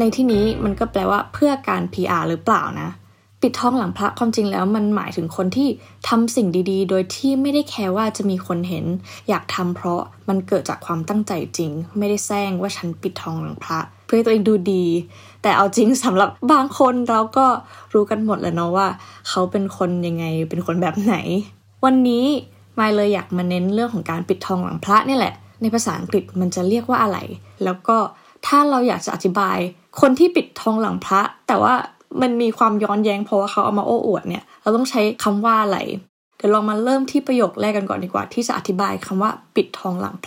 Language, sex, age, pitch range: Thai, female, 20-39, 185-235 Hz